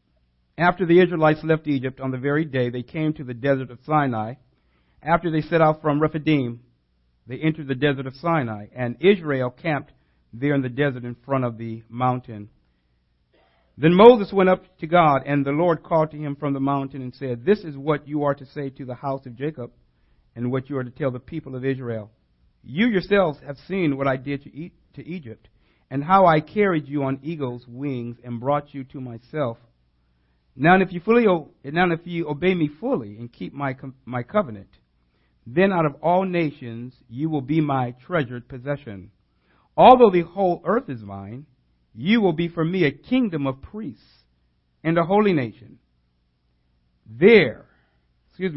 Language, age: English, 50-69